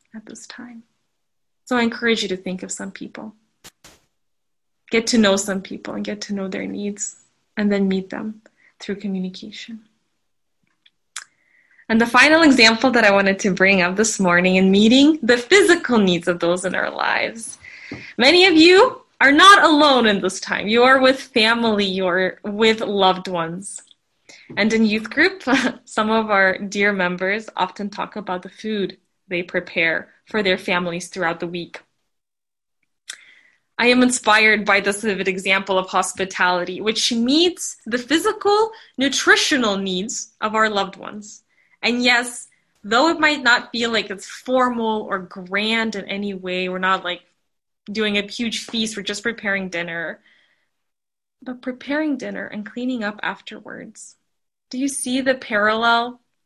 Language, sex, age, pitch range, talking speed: English, female, 20-39, 190-245 Hz, 155 wpm